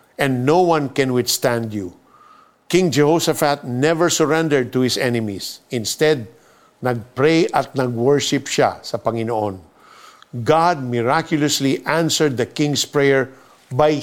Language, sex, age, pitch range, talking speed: Filipino, male, 50-69, 125-155 Hz, 115 wpm